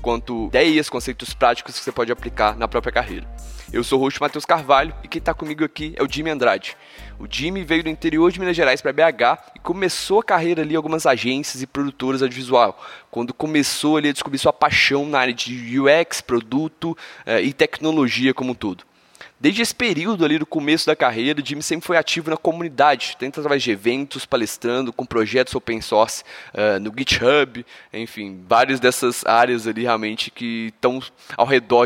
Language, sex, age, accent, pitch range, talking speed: Portuguese, male, 20-39, Brazilian, 125-160 Hz, 190 wpm